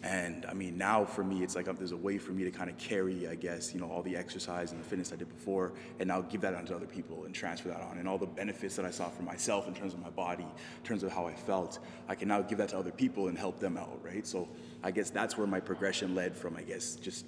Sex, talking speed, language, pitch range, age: male, 300 wpm, English, 90-105 Hz, 20-39